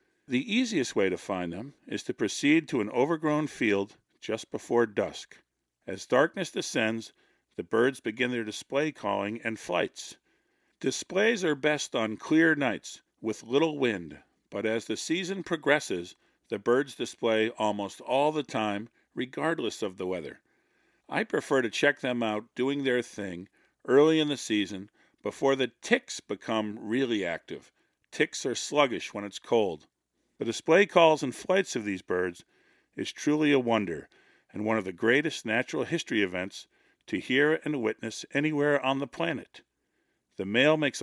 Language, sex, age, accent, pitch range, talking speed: English, male, 50-69, American, 110-150 Hz, 160 wpm